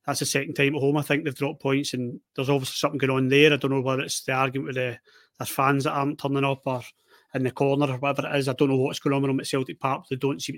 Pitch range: 130-140 Hz